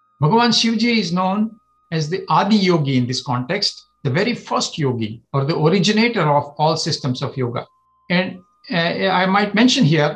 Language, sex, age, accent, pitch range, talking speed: English, male, 60-79, Indian, 155-205 Hz, 170 wpm